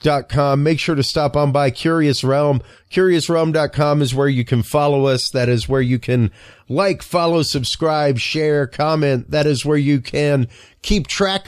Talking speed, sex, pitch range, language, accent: 180 wpm, male, 140-175 Hz, English, American